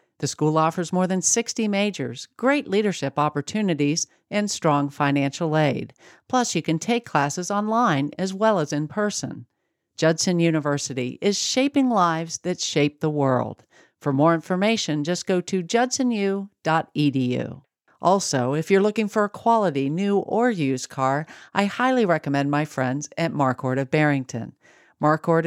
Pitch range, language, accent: 145-195 Hz, English, American